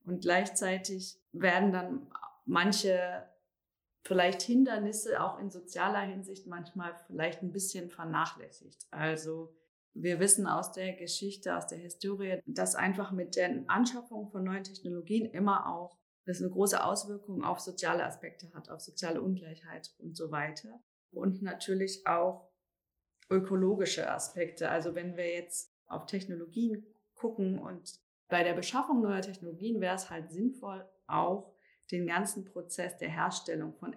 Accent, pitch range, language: German, 175-200 Hz, German